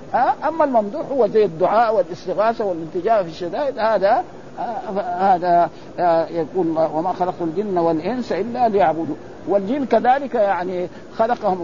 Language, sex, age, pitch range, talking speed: Arabic, male, 50-69, 180-235 Hz, 115 wpm